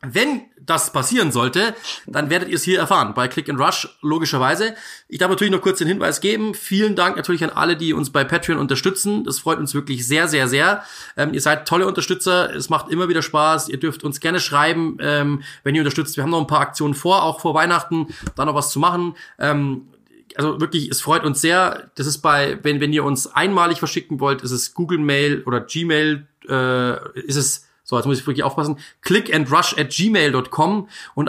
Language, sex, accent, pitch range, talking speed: German, male, German, 135-165 Hz, 210 wpm